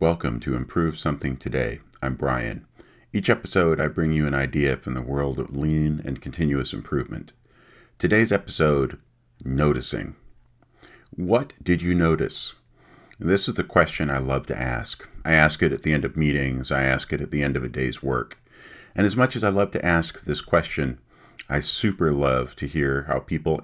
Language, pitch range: English, 70-90 Hz